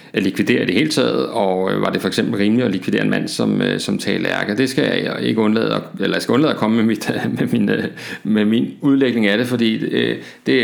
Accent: native